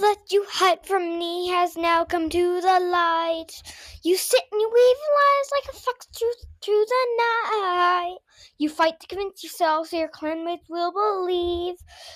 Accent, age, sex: American, 10-29, female